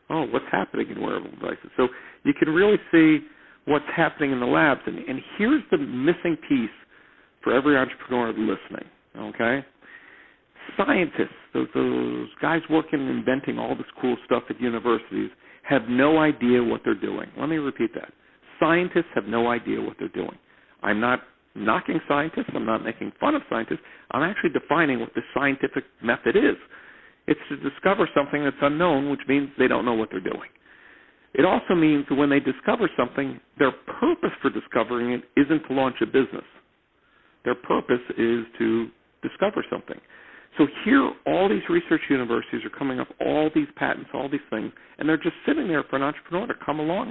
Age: 50-69